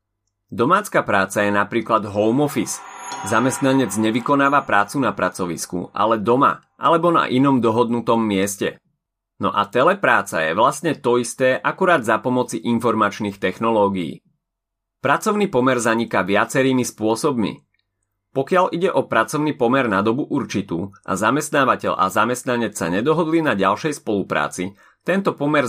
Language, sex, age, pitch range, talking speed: Slovak, male, 30-49, 110-145 Hz, 125 wpm